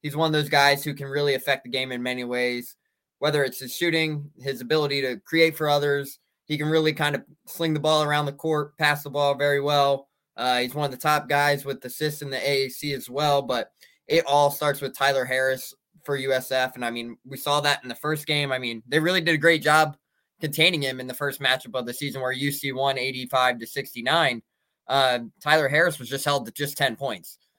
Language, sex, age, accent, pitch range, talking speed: English, male, 20-39, American, 130-150 Hz, 230 wpm